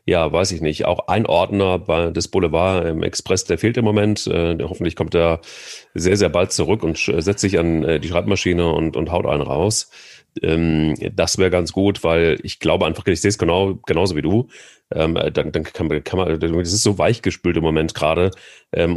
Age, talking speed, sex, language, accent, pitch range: 30-49, 210 wpm, male, German, German, 80-105 Hz